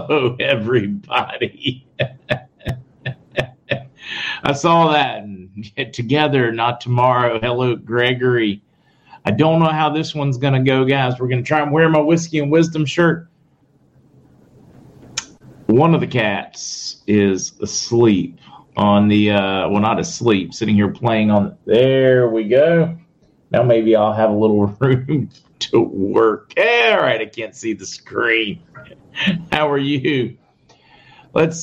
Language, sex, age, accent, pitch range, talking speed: English, male, 40-59, American, 115-150 Hz, 135 wpm